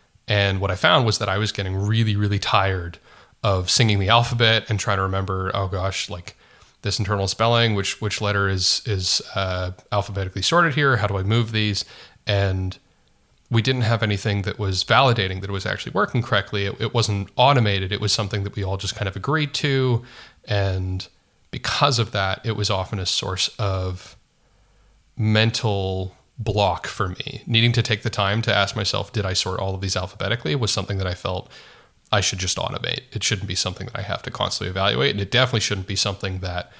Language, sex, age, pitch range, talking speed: English, male, 30-49, 95-115 Hz, 200 wpm